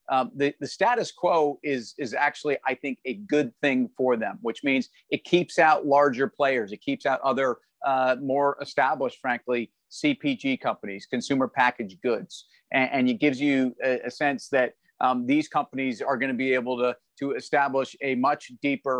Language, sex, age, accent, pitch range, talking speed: English, male, 40-59, American, 130-155 Hz, 185 wpm